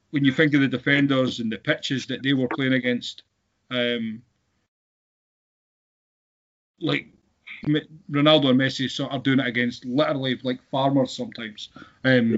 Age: 30-49